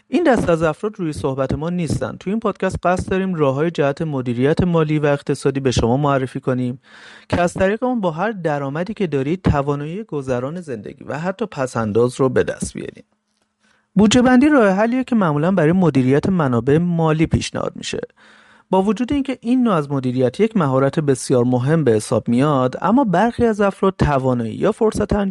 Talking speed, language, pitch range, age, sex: 180 wpm, Persian, 130-195 Hz, 40-59, male